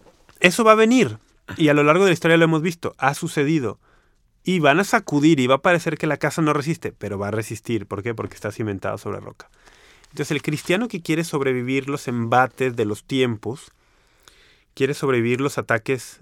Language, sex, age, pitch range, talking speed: Spanish, male, 30-49, 115-145 Hz, 205 wpm